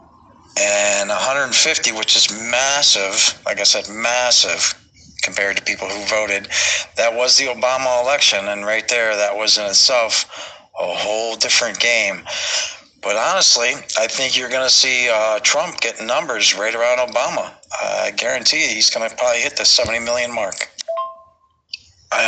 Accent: American